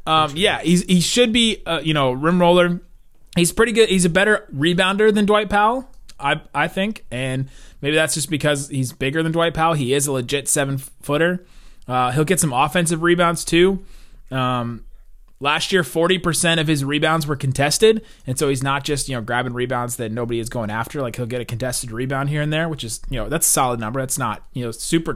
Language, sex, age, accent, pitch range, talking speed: English, male, 20-39, American, 125-170 Hz, 220 wpm